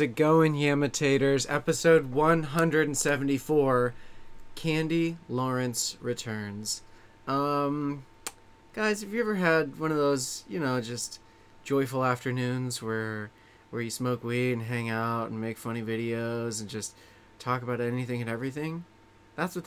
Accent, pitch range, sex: American, 115-145 Hz, male